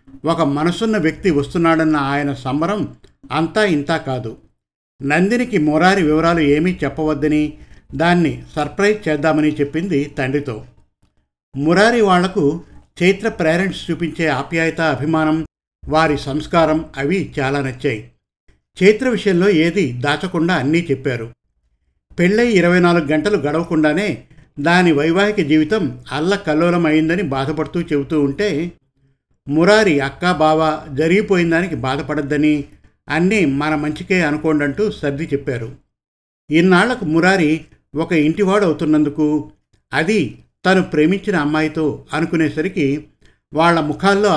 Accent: native